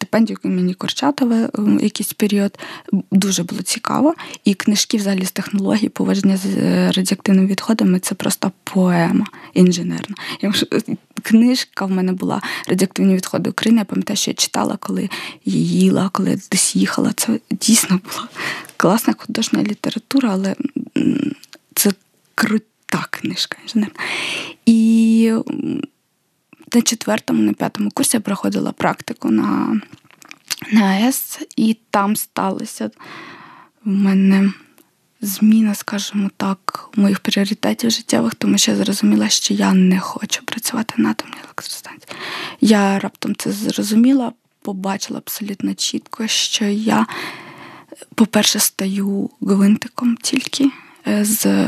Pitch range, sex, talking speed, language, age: 195-240 Hz, female, 120 wpm, Ukrainian, 20-39